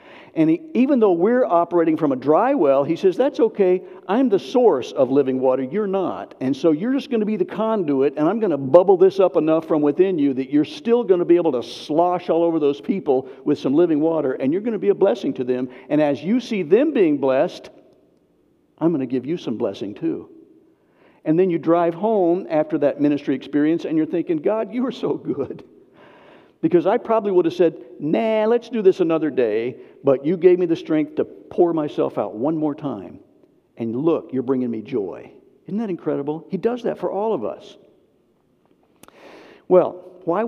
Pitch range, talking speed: 150-240 Hz, 210 wpm